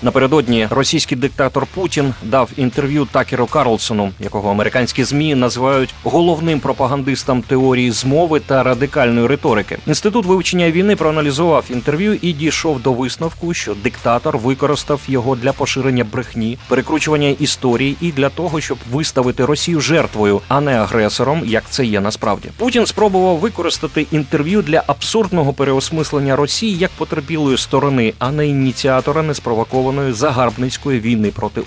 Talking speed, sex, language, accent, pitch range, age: 135 wpm, male, Ukrainian, native, 120-155 Hz, 30-49